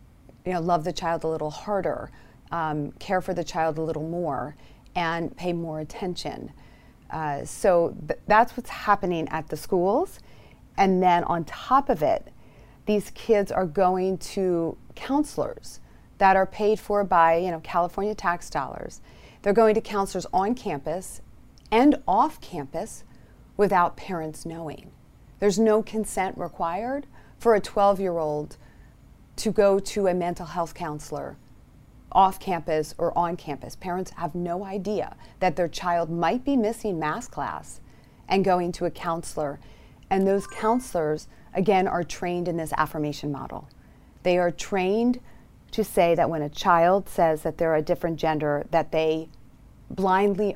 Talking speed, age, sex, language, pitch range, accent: 155 wpm, 40-59, female, English, 165-200 Hz, American